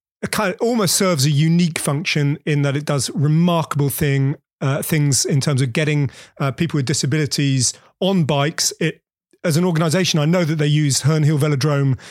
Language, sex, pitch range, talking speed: English, male, 140-170 Hz, 185 wpm